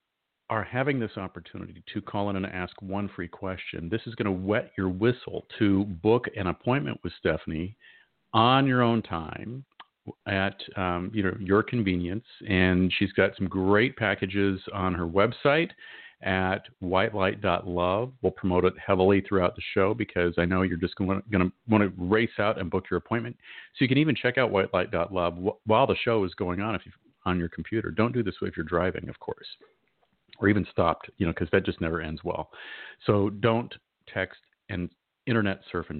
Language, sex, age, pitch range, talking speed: English, male, 40-59, 90-110 Hz, 190 wpm